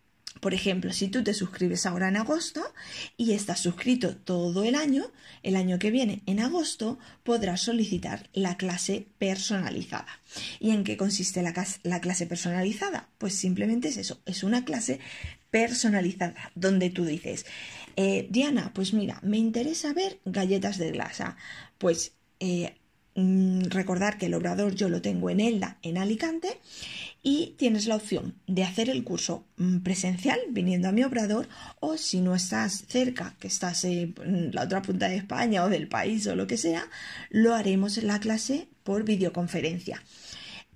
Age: 20-39